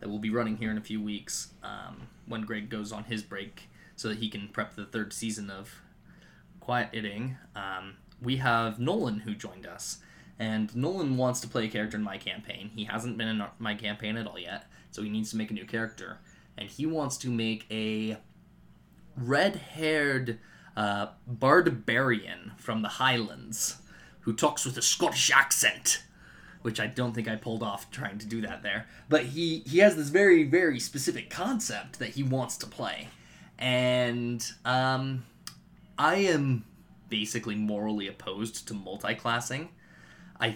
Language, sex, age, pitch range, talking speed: English, male, 20-39, 105-125 Hz, 170 wpm